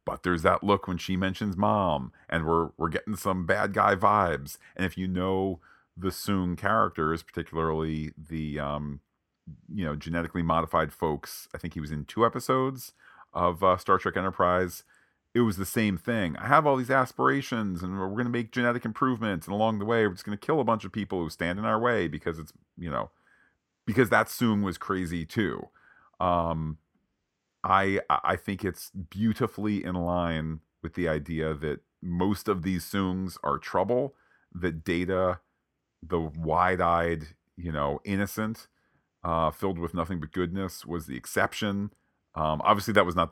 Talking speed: 175 wpm